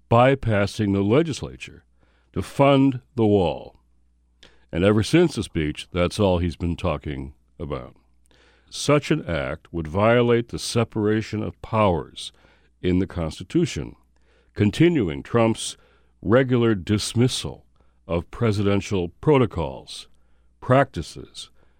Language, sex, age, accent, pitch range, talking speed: English, male, 60-79, American, 75-115 Hz, 105 wpm